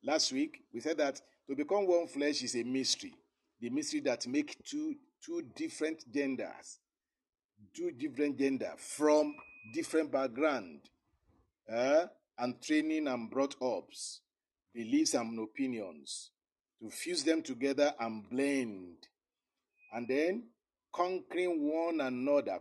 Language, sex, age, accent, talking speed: English, male, 50-69, Nigerian, 120 wpm